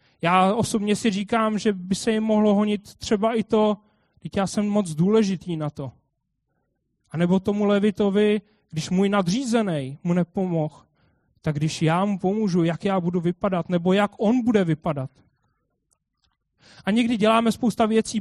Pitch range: 180-245 Hz